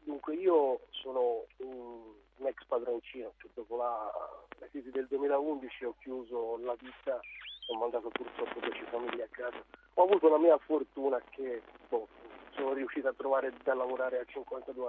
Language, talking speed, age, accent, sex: Italian, 155 wpm, 40-59, native, male